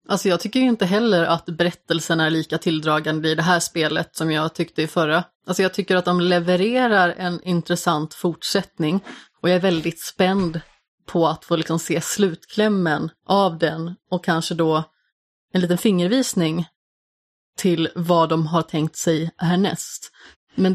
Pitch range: 165-190 Hz